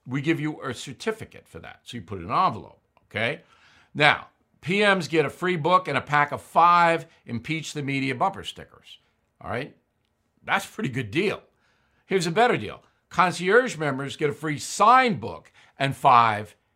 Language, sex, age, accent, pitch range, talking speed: English, male, 60-79, American, 135-175 Hz, 180 wpm